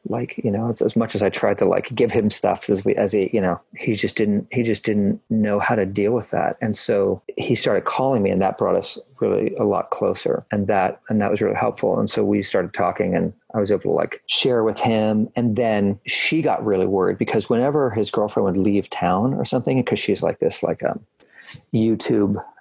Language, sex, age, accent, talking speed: English, male, 40-59, American, 235 wpm